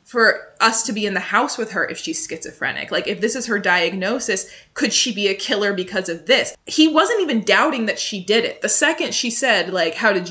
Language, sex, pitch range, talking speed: English, female, 190-250 Hz, 240 wpm